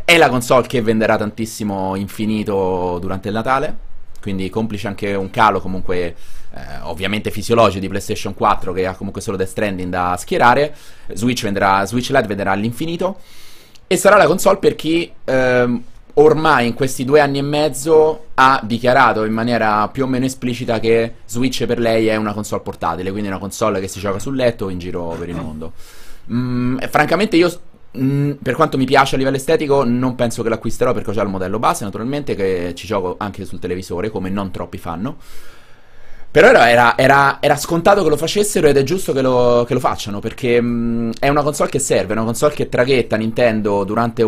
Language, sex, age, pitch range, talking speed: Italian, male, 30-49, 100-130 Hz, 190 wpm